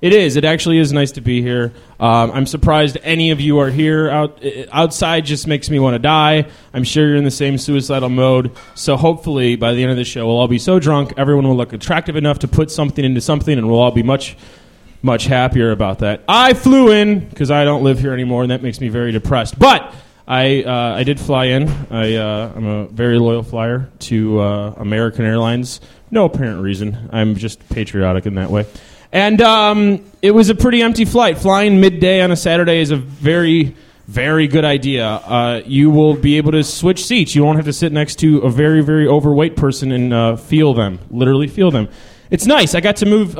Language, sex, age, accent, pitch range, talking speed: English, male, 20-39, American, 120-155 Hz, 220 wpm